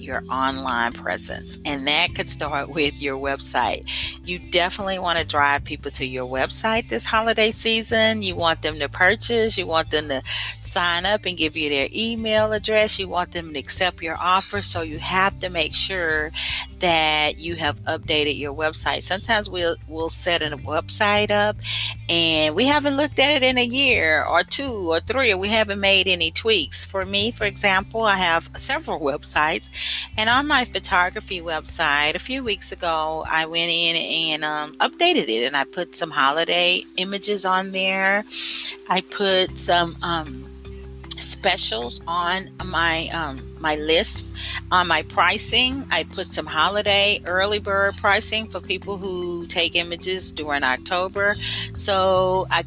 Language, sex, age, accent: English, female, 40-59, American